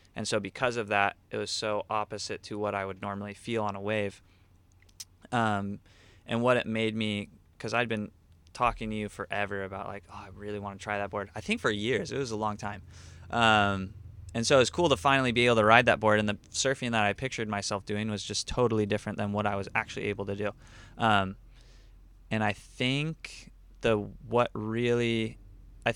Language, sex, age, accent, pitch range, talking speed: English, male, 20-39, American, 100-115 Hz, 215 wpm